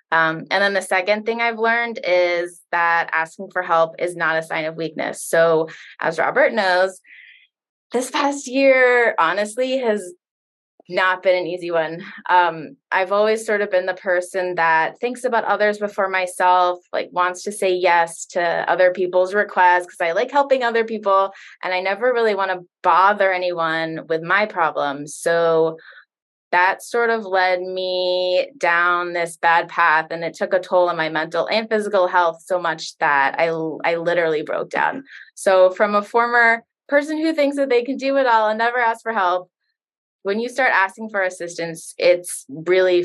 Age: 20-39